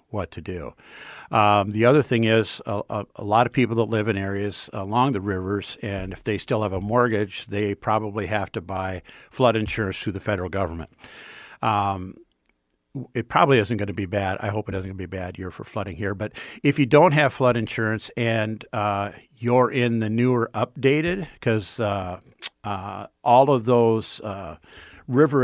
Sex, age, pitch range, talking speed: male, 50-69, 100-120 Hz, 195 wpm